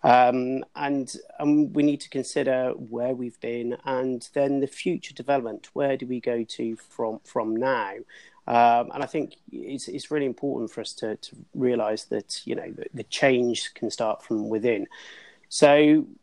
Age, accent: 40-59, British